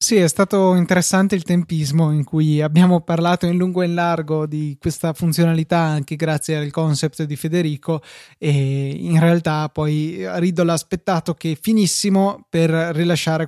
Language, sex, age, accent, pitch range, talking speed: Italian, male, 20-39, native, 155-175 Hz, 155 wpm